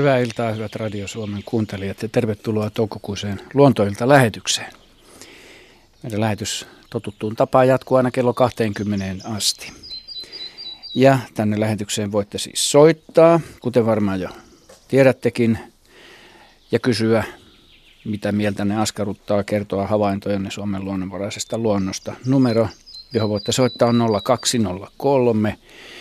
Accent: native